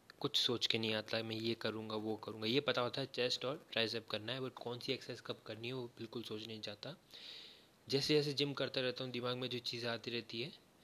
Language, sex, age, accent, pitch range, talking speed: Hindi, male, 20-39, native, 115-135 Hz, 240 wpm